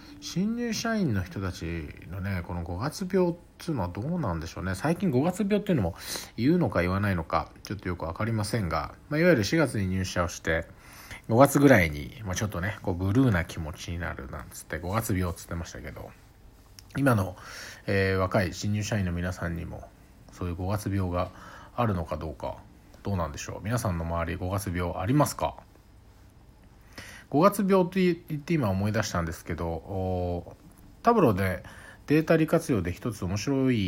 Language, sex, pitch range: Japanese, male, 90-130 Hz